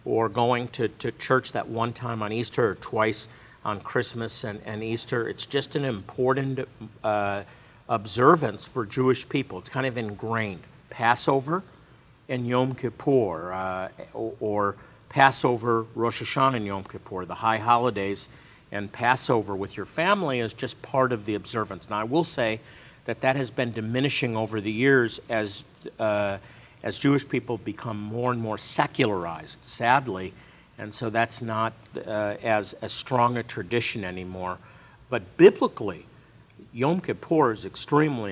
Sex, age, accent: male, 50-69, American